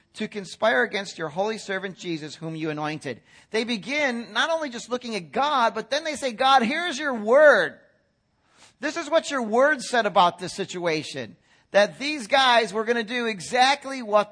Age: 40-59